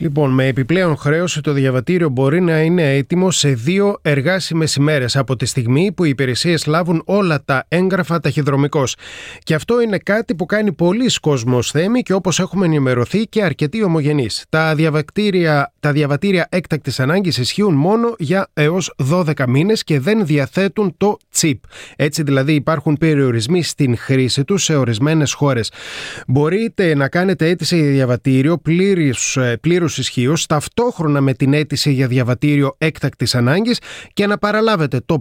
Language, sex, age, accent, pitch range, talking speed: Greek, male, 30-49, native, 135-175 Hz, 145 wpm